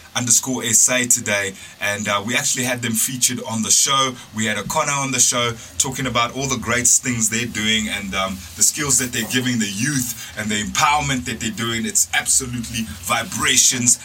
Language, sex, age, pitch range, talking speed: English, male, 30-49, 110-130 Hz, 200 wpm